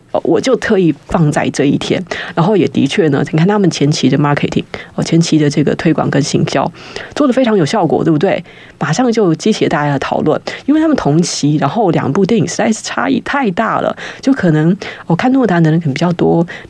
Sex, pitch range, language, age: female, 150-185 Hz, Chinese, 20-39